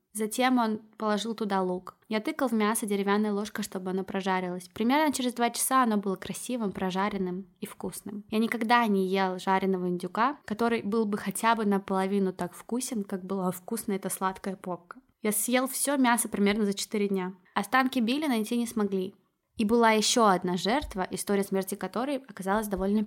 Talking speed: 175 wpm